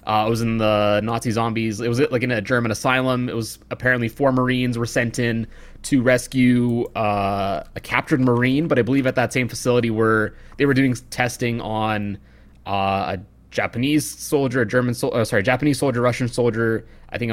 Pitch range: 110-130 Hz